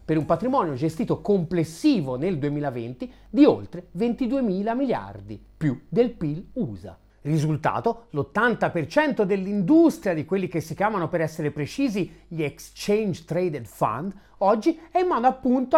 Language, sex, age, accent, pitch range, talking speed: Italian, male, 40-59, native, 150-255 Hz, 135 wpm